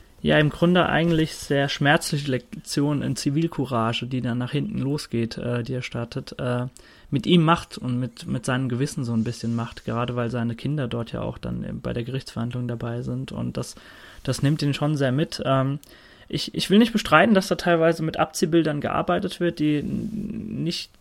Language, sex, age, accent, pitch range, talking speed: German, male, 30-49, German, 120-160 Hz, 195 wpm